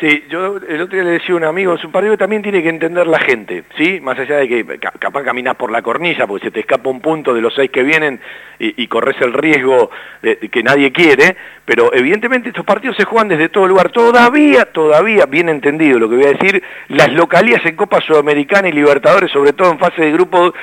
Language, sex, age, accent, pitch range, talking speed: Spanish, male, 40-59, Argentinian, 145-240 Hz, 240 wpm